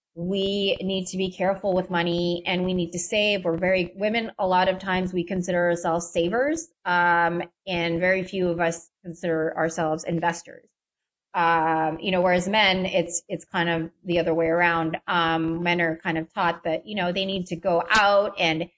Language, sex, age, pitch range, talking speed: English, female, 30-49, 170-195 Hz, 190 wpm